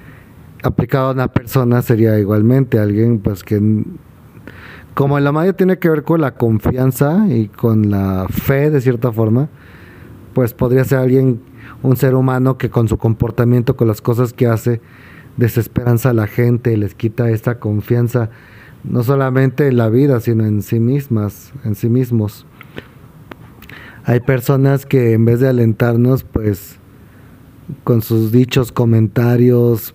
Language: Spanish